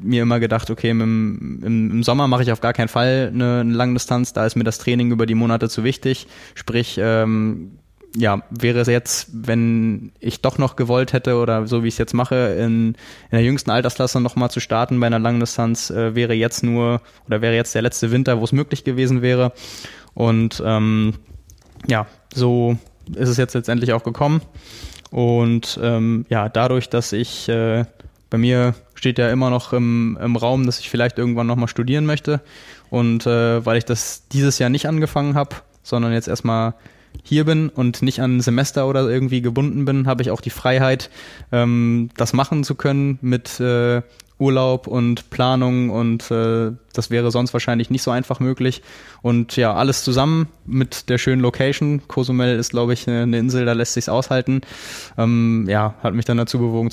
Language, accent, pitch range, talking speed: German, German, 115-130 Hz, 190 wpm